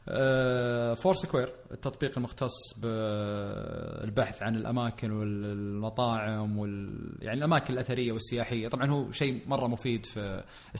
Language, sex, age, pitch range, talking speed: Arabic, male, 30-49, 115-140 Hz, 105 wpm